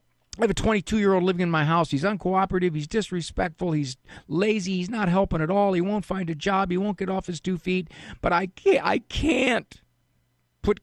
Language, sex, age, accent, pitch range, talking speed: English, male, 50-69, American, 110-180 Hz, 210 wpm